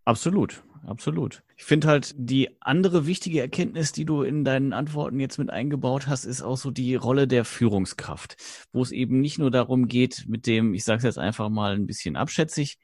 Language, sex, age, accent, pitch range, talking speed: German, male, 30-49, German, 105-130 Hz, 200 wpm